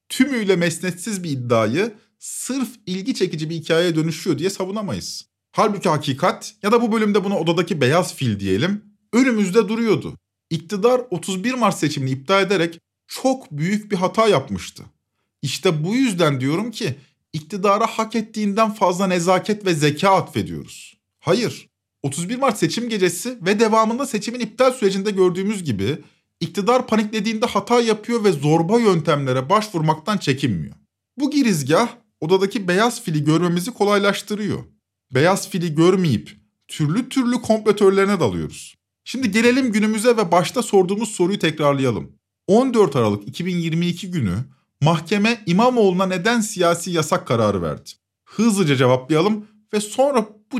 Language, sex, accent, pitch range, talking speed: Turkish, male, native, 155-220 Hz, 130 wpm